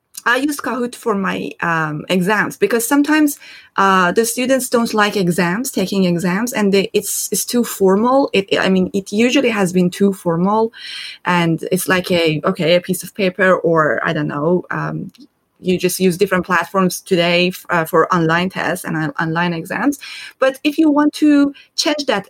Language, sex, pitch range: English, female, 175-235 Hz